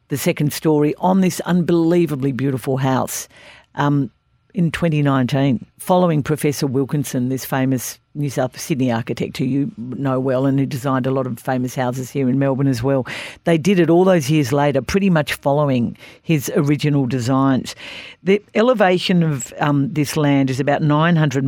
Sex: female